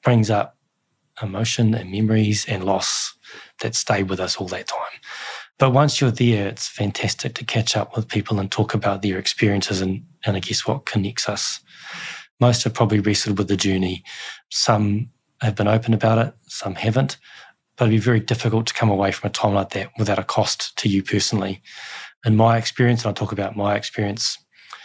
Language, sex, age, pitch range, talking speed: English, male, 20-39, 100-115 Hz, 195 wpm